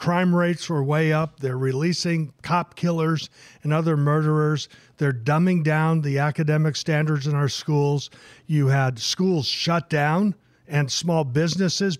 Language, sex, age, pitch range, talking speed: English, male, 50-69, 145-180 Hz, 145 wpm